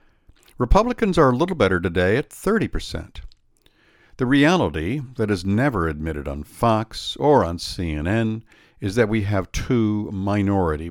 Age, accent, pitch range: 60-79, American, 85-120 Hz